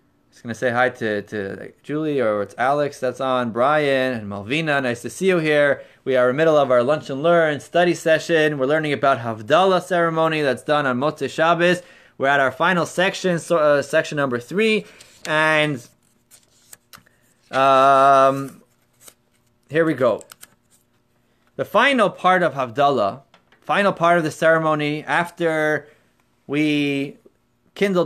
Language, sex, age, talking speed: English, male, 20-39, 150 wpm